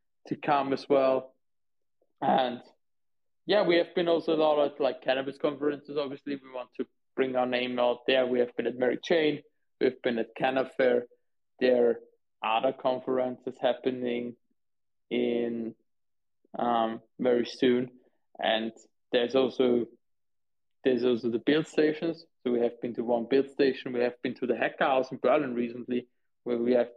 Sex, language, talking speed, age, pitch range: male, English, 165 wpm, 20-39, 120-140 Hz